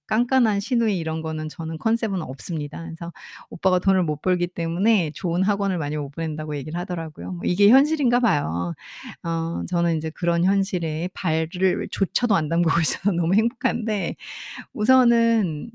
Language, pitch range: Korean, 165-225 Hz